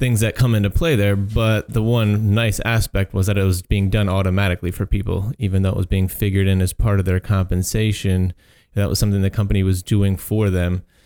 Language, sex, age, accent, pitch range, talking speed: English, male, 30-49, American, 95-110 Hz, 220 wpm